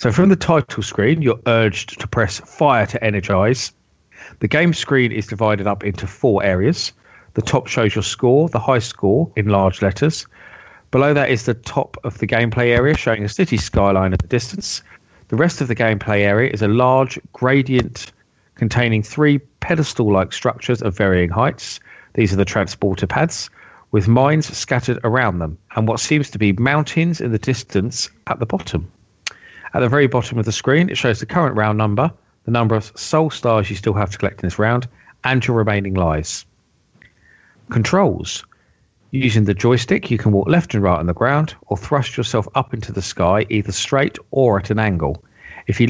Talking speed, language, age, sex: 190 wpm, English, 40-59, male